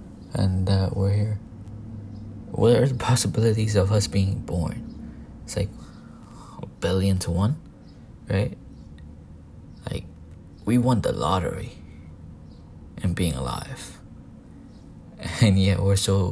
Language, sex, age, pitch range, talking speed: English, male, 20-39, 90-105 Hz, 115 wpm